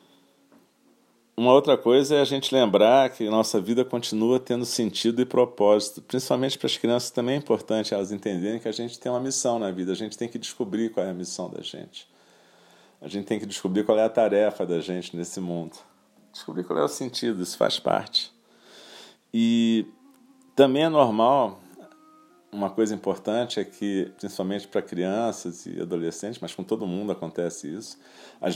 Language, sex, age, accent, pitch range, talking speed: Portuguese, male, 40-59, Brazilian, 95-115 Hz, 175 wpm